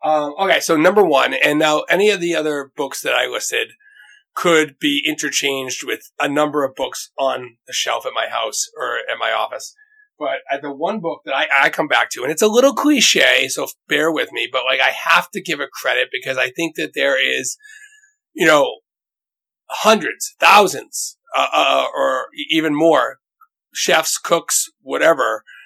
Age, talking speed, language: 30-49, 180 wpm, English